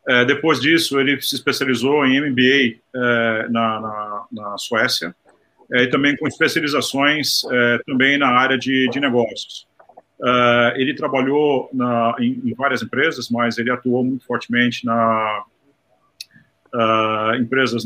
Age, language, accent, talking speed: 50-69, Portuguese, Brazilian, 135 wpm